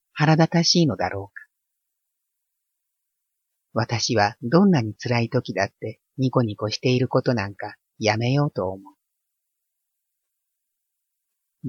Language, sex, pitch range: Japanese, female, 110-140 Hz